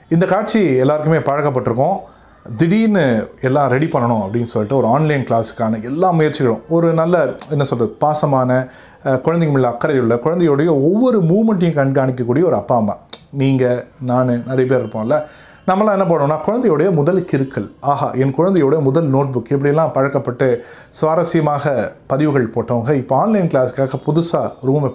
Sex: male